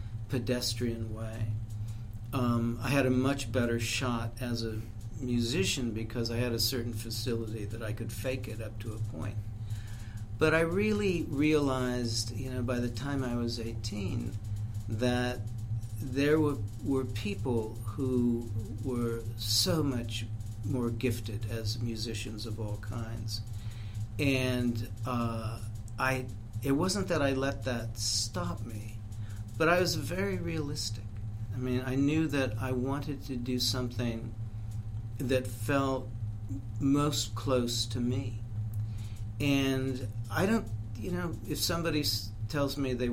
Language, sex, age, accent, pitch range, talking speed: English, male, 50-69, American, 110-125 Hz, 135 wpm